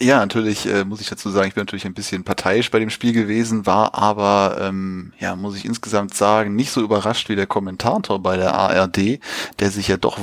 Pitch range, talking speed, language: 100-110 Hz, 225 wpm, German